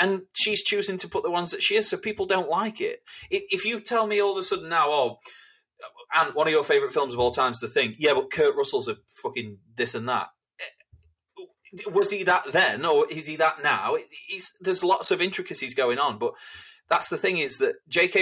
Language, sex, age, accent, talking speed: English, male, 20-39, British, 225 wpm